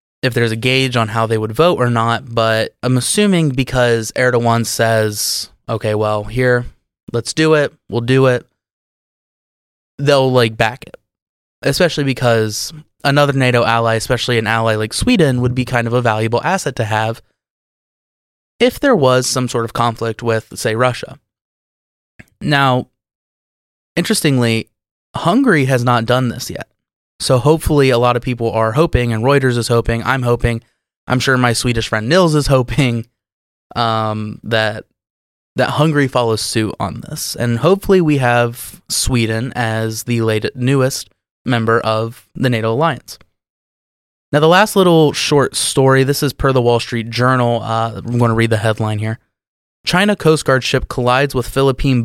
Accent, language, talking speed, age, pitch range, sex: American, English, 160 wpm, 20-39, 115-135 Hz, male